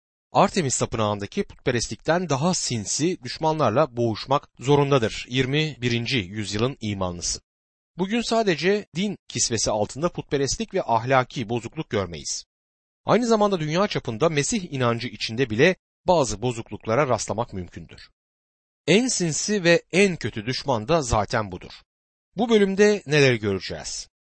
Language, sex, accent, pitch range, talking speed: Turkish, male, native, 110-175 Hz, 115 wpm